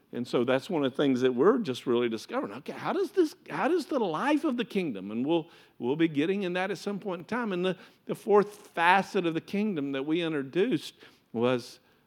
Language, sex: English, male